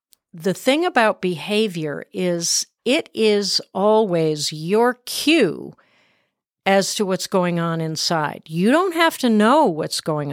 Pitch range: 180-240 Hz